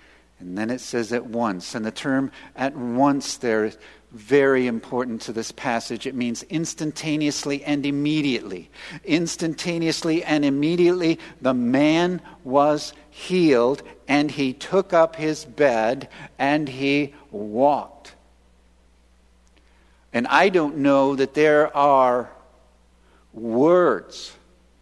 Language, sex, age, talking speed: English, male, 50-69, 115 wpm